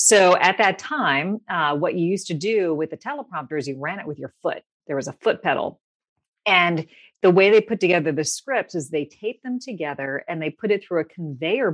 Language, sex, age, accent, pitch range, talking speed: English, female, 40-59, American, 150-190 Hz, 230 wpm